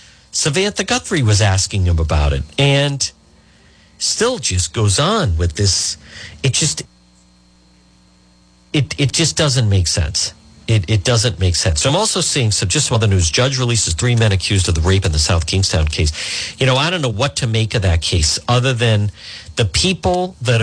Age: 50-69